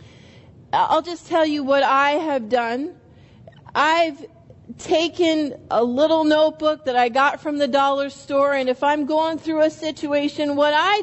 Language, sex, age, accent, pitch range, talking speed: English, female, 40-59, American, 260-320 Hz, 160 wpm